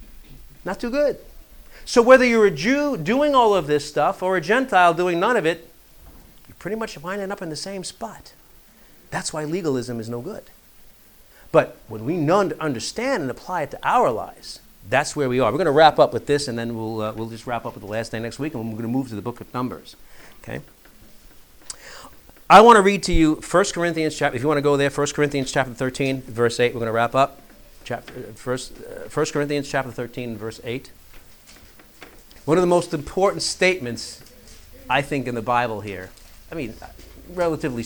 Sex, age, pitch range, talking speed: male, 40-59, 115-170 Hz, 205 wpm